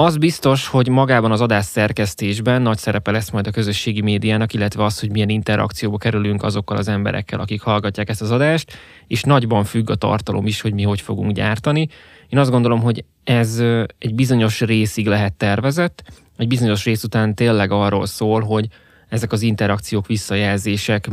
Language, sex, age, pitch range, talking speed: Hungarian, male, 20-39, 100-120 Hz, 175 wpm